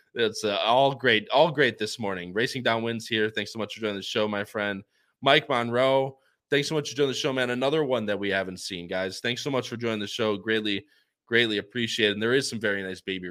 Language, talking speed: English, 250 wpm